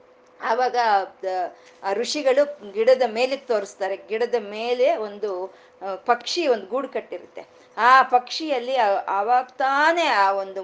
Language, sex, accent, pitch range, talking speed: Kannada, female, native, 215-295 Hz, 100 wpm